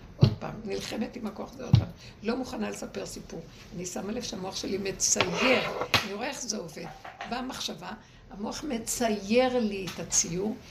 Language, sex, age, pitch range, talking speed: Hebrew, female, 60-79, 185-230 Hz, 165 wpm